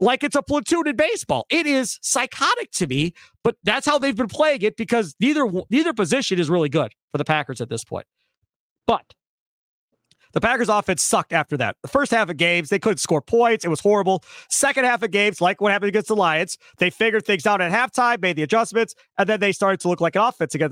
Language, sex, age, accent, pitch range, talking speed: English, male, 40-59, American, 165-225 Hz, 230 wpm